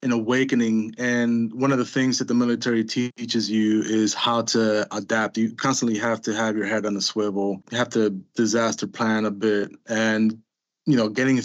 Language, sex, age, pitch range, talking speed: English, male, 20-39, 110-130 Hz, 195 wpm